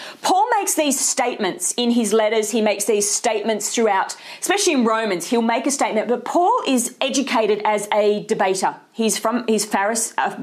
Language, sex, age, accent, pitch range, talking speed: English, female, 40-59, Australian, 220-300 Hz, 180 wpm